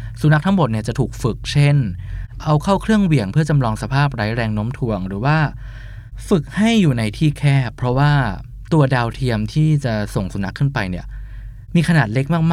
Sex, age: male, 20-39